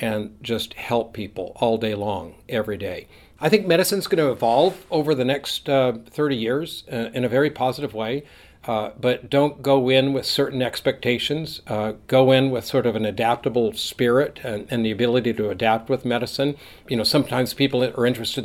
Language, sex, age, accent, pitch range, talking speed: English, male, 60-79, American, 110-130 Hz, 180 wpm